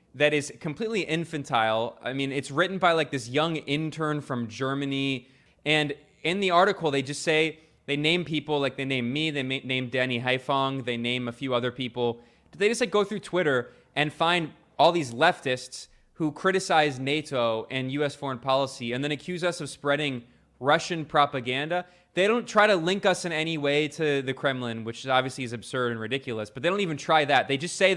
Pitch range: 130-165 Hz